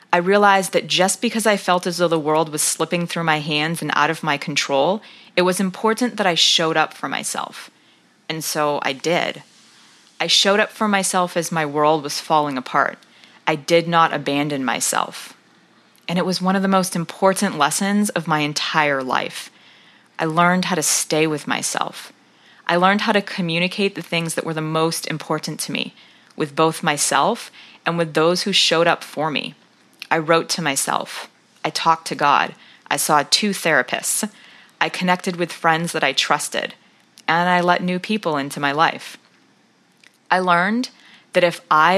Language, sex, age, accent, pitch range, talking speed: English, female, 20-39, American, 155-190 Hz, 180 wpm